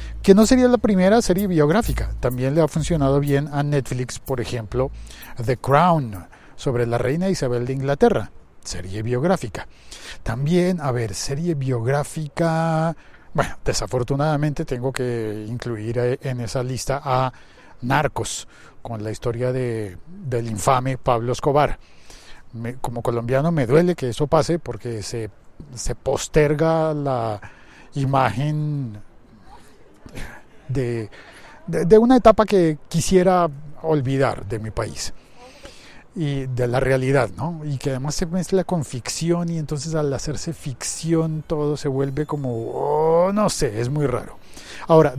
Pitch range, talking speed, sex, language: 125-160 Hz, 130 wpm, male, Spanish